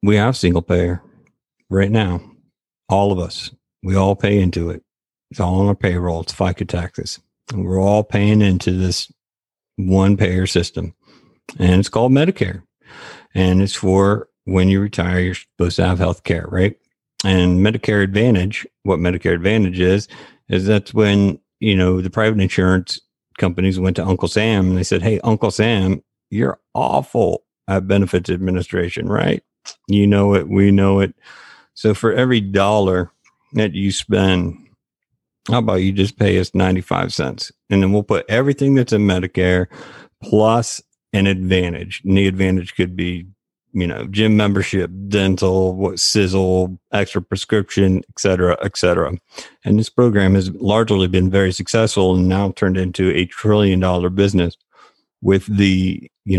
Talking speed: 160 wpm